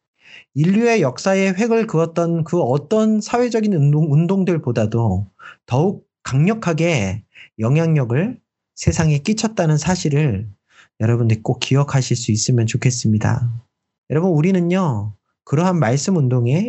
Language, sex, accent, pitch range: Korean, male, native, 125-185 Hz